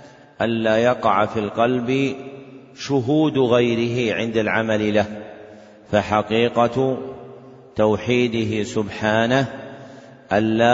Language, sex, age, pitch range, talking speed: Arabic, male, 30-49, 110-125 Hz, 75 wpm